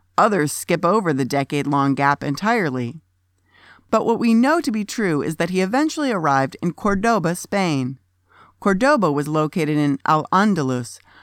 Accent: American